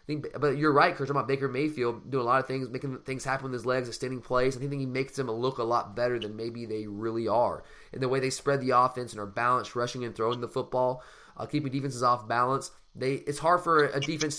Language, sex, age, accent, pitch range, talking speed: English, male, 20-39, American, 125-150 Hz, 265 wpm